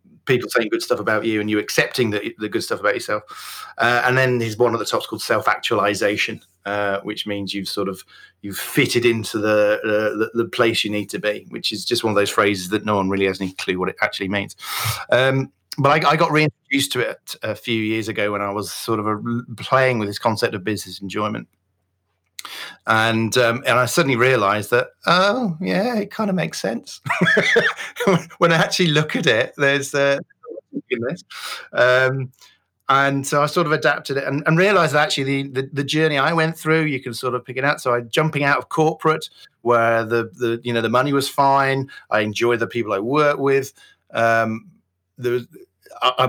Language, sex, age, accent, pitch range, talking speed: English, male, 40-59, British, 110-140 Hz, 210 wpm